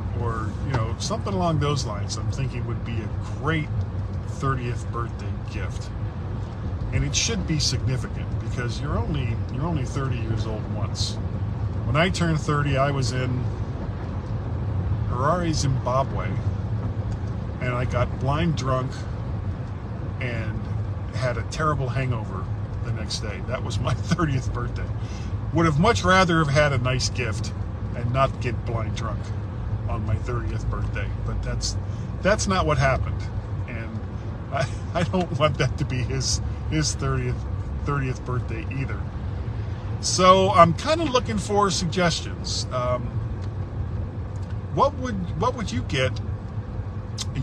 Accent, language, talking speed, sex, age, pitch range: American, English, 140 wpm, male, 40-59, 100-125 Hz